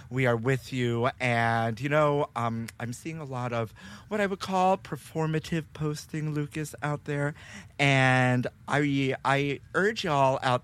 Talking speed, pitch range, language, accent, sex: 165 wpm, 115-145 Hz, English, American, male